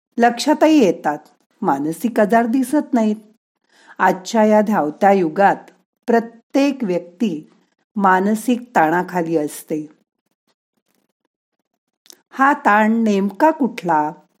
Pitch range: 170-235 Hz